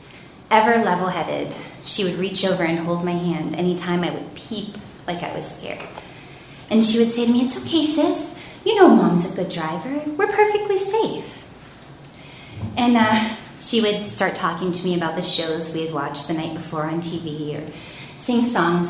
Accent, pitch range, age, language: American, 165-230 Hz, 30-49, English